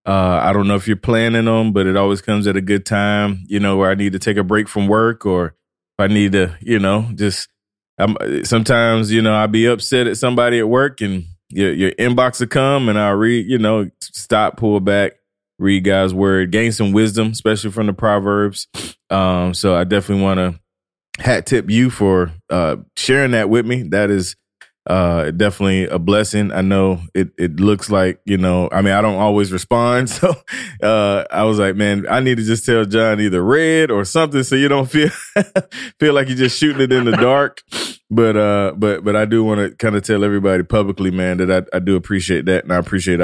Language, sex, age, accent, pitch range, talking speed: English, male, 20-39, American, 95-115 Hz, 220 wpm